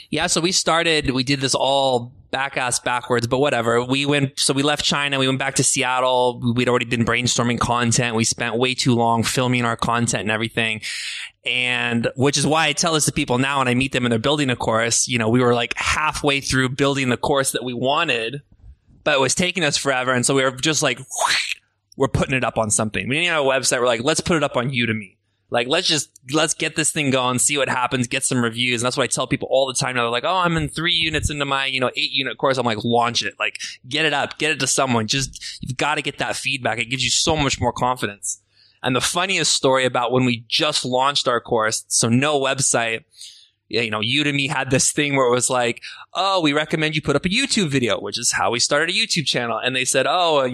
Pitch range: 120-145 Hz